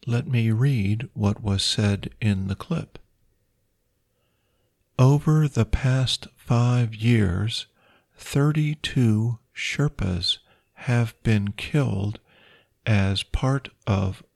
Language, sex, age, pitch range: Thai, male, 50-69, 105-130 Hz